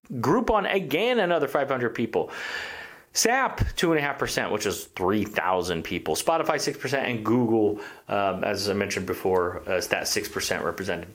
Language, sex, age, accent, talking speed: English, male, 30-49, American, 130 wpm